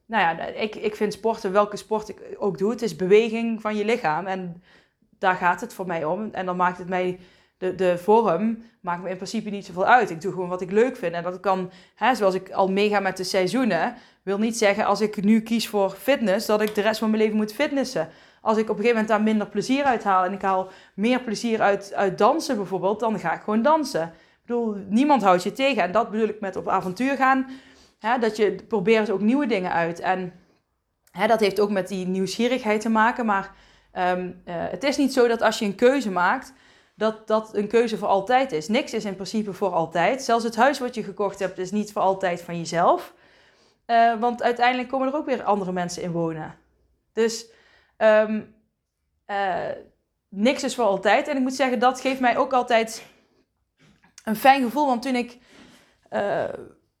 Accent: Dutch